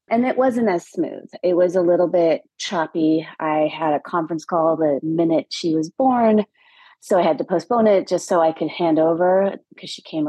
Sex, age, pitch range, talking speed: female, 30-49, 150-195 Hz, 210 wpm